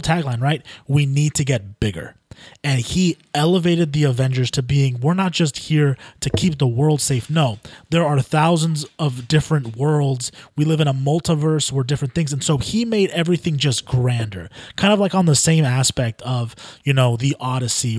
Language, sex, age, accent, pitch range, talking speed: English, male, 20-39, American, 130-160 Hz, 190 wpm